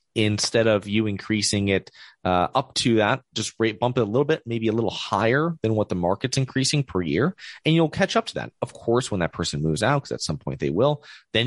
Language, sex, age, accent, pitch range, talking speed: English, male, 30-49, American, 100-130 Hz, 245 wpm